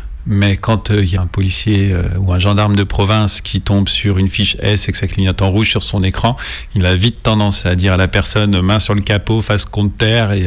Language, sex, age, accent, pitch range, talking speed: French, male, 40-59, French, 95-110 Hz, 265 wpm